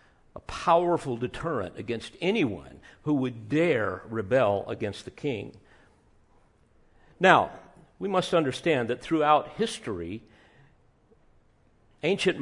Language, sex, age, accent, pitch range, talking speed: English, male, 50-69, American, 110-160 Hz, 95 wpm